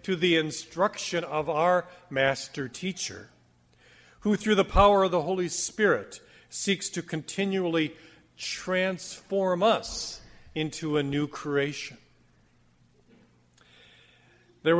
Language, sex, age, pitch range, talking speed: English, male, 50-69, 135-180 Hz, 100 wpm